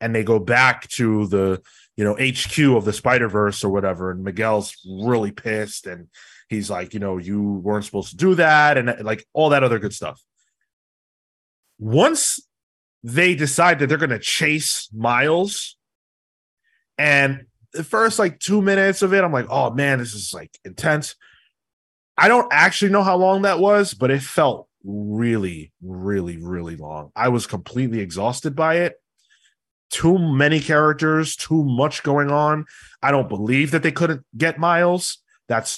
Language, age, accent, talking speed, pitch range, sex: English, 20-39, American, 165 wpm, 110-155 Hz, male